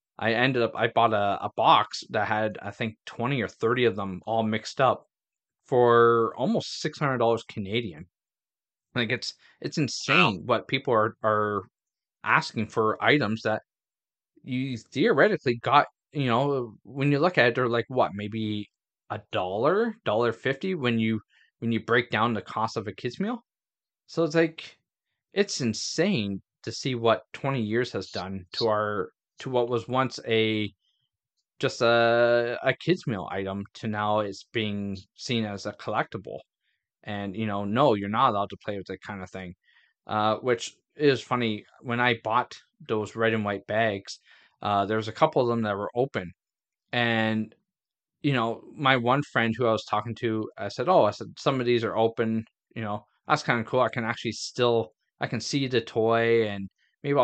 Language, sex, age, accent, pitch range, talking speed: English, male, 20-39, American, 105-125 Hz, 185 wpm